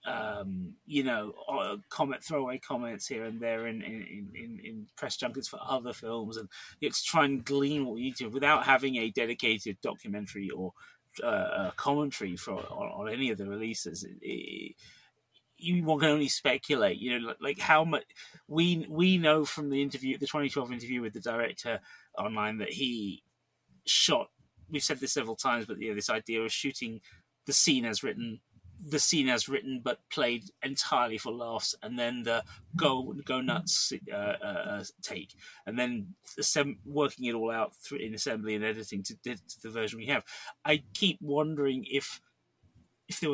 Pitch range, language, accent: 115-155 Hz, English, British